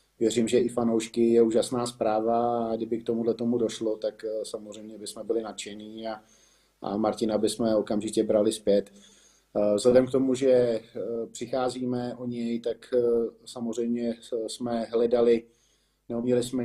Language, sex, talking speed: Slovak, male, 135 wpm